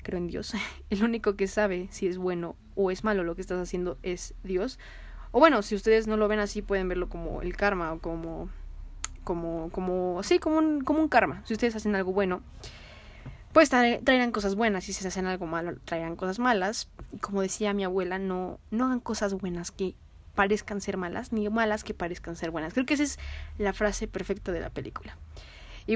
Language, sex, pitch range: Spanish, female, 180-220 Hz